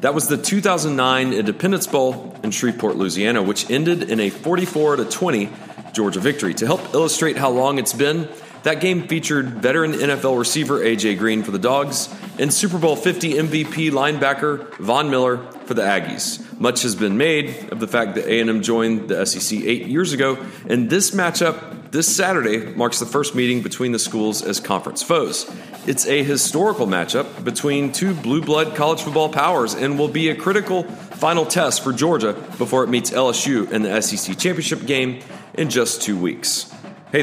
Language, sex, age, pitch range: English, male, 40-59, 120-160 Hz